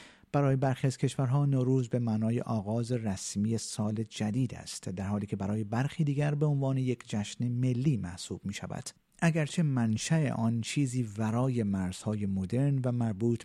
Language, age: Persian, 50-69